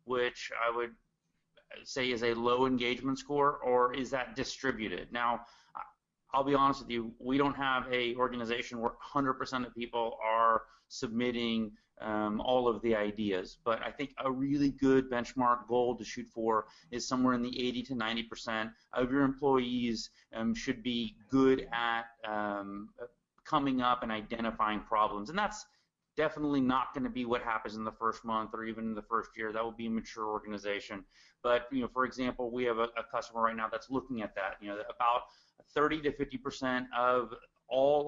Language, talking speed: English, 185 wpm